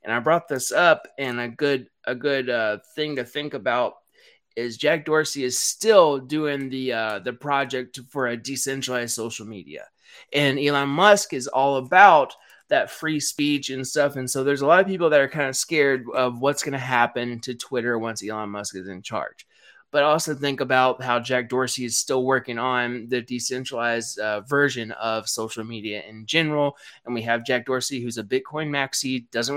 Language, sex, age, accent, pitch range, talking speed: English, male, 20-39, American, 120-145 Hz, 195 wpm